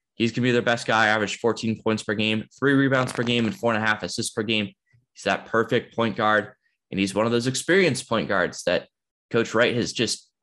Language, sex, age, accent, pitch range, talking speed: English, male, 10-29, American, 100-115 Hz, 240 wpm